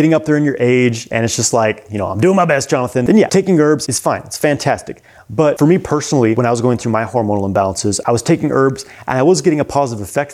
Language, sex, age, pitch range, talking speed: English, male, 30-49, 105-130 Hz, 280 wpm